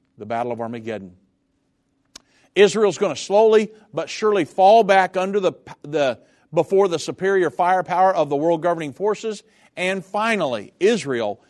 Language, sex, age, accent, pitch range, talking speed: English, male, 50-69, American, 140-195 Hz, 140 wpm